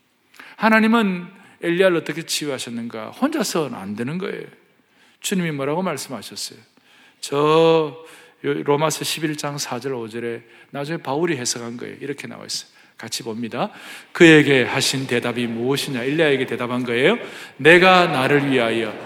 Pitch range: 130-180 Hz